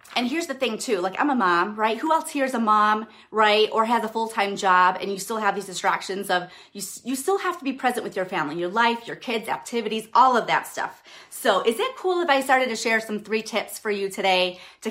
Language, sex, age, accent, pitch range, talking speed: English, female, 30-49, American, 200-265 Hz, 260 wpm